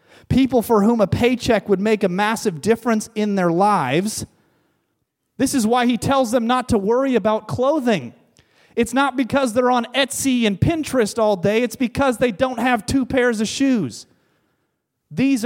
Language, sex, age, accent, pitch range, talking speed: English, male, 30-49, American, 185-240 Hz, 170 wpm